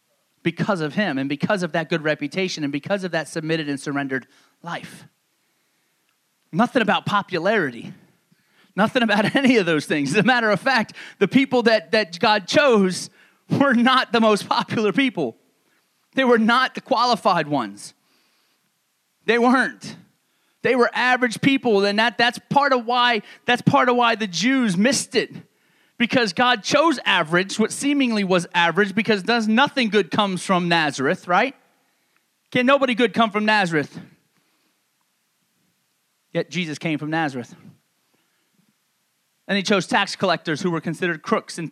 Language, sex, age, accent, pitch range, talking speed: English, male, 30-49, American, 170-235 Hz, 145 wpm